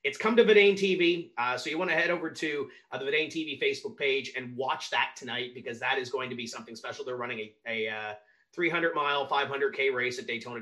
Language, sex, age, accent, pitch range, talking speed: English, male, 30-49, American, 125-210 Hz, 245 wpm